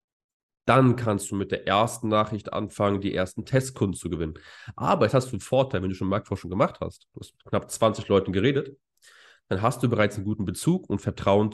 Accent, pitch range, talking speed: German, 100-125 Hz, 210 wpm